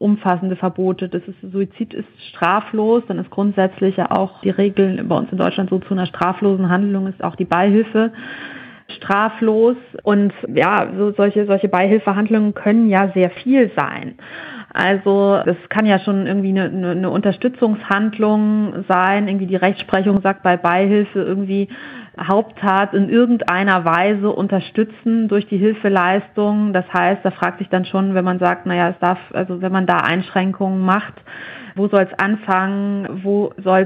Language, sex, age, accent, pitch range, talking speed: German, female, 30-49, German, 185-205 Hz, 160 wpm